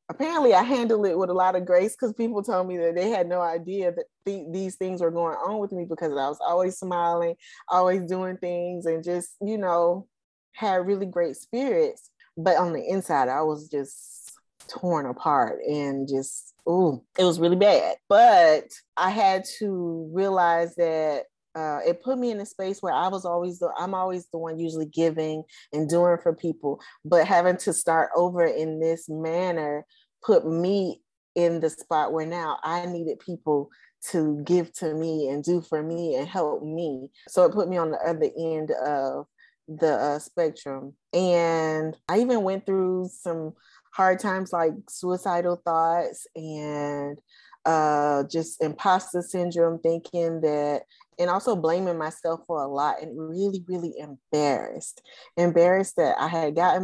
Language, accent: English, American